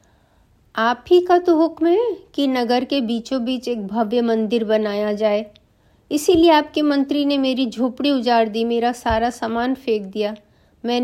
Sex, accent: female, native